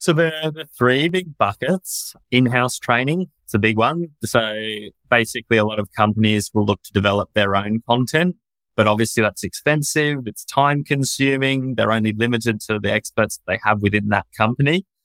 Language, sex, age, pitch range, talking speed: English, male, 20-39, 105-125 Hz, 170 wpm